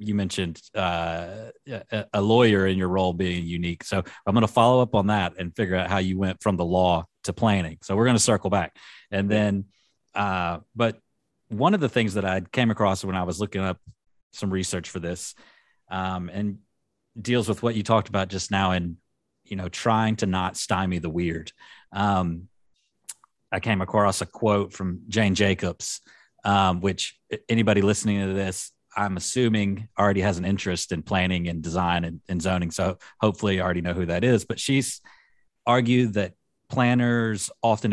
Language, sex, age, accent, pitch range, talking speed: English, male, 30-49, American, 90-110 Hz, 180 wpm